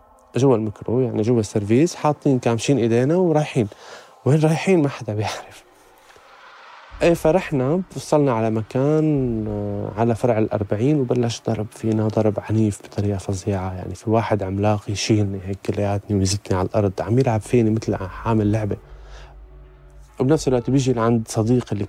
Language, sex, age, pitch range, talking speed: Arabic, male, 20-39, 105-130 Hz, 140 wpm